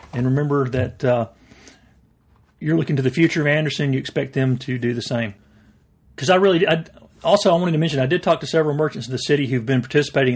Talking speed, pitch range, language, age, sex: 220 wpm, 125-150 Hz, English, 40-59, male